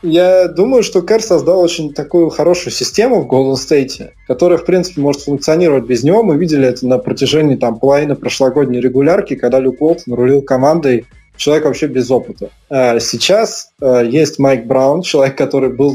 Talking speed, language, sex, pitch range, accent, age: 165 wpm, Russian, male, 125-155 Hz, native, 20-39